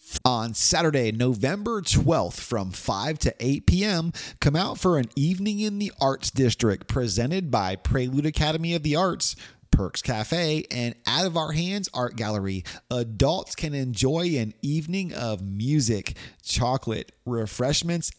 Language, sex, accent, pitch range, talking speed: English, male, American, 110-155 Hz, 140 wpm